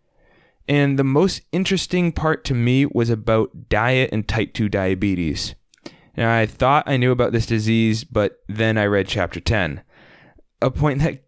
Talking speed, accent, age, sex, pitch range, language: 165 wpm, American, 20-39, male, 105-135 Hz, English